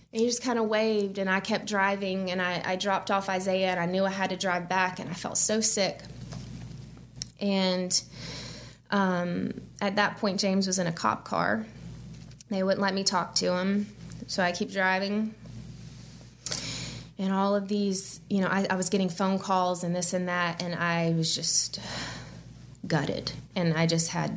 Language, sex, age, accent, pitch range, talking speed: English, female, 20-39, American, 170-195 Hz, 185 wpm